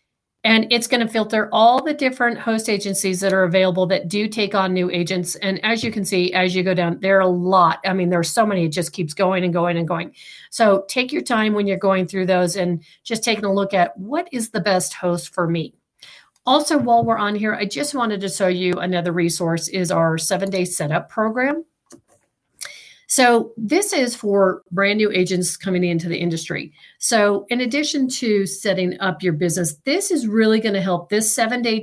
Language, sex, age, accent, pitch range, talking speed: English, female, 40-59, American, 180-220 Hz, 215 wpm